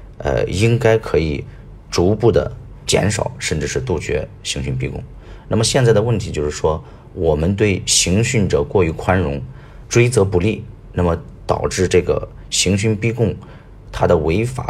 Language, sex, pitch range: Chinese, male, 80-110 Hz